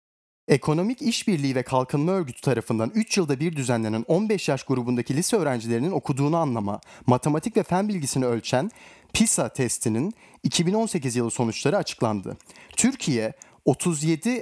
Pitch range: 125-180 Hz